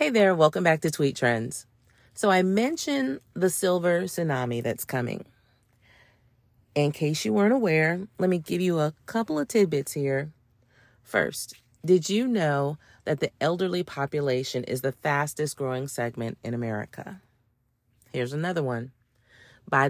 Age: 40-59